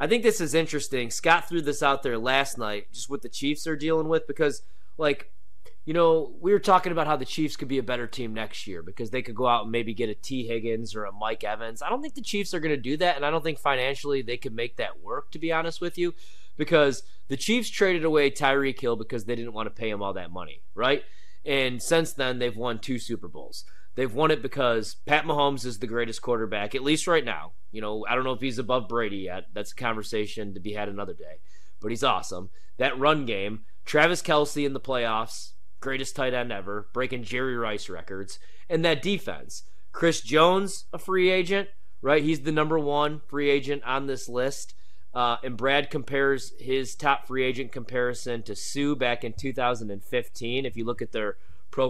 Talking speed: 220 wpm